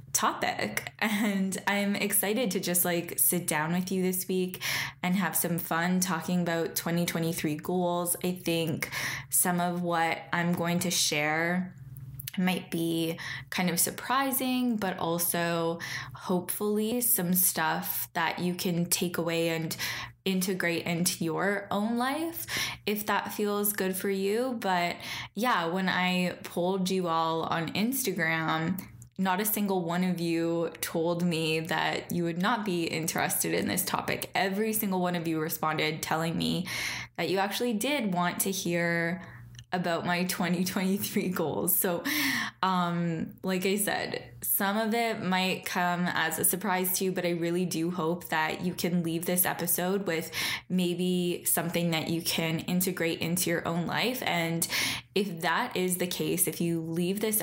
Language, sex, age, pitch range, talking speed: English, female, 10-29, 165-190 Hz, 155 wpm